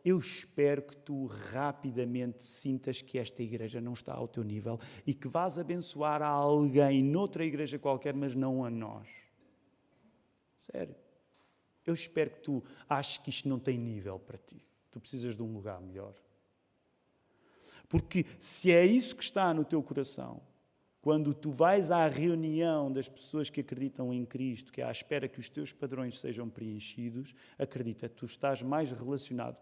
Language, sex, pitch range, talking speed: Portuguese, male, 120-170 Hz, 165 wpm